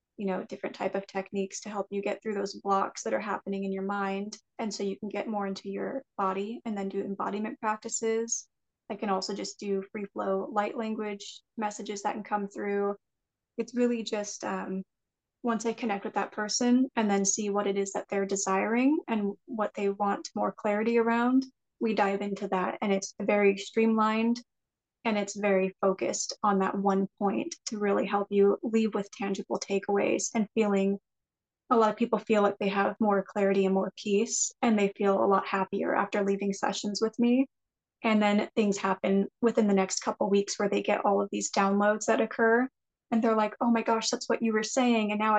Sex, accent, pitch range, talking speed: female, American, 195-225 Hz, 205 wpm